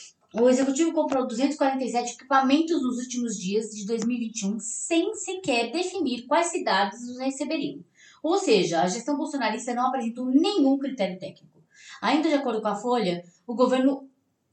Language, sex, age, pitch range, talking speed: Portuguese, female, 20-39, 210-285 Hz, 145 wpm